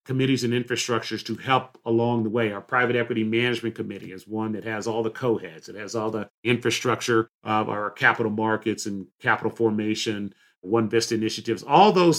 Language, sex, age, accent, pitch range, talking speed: English, male, 40-59, American, 110-130 Hz, 180 wpm